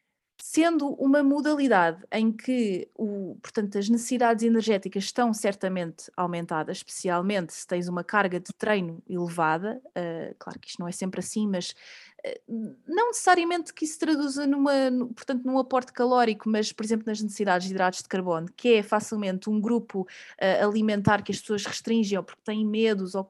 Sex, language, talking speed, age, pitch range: female, Portuguese, 175 wpm, 20-39, 200-255 Hz